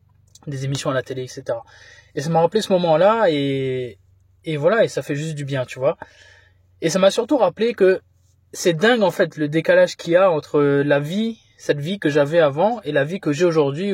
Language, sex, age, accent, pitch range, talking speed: French, male, 20-39, French, 145-205 Hz, 225 wpm